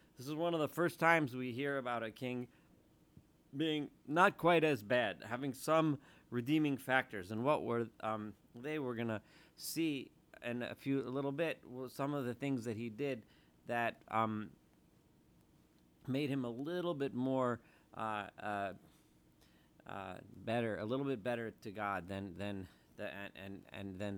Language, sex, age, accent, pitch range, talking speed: English, male, 40-59, American, 105-140 Hz, 170 wpm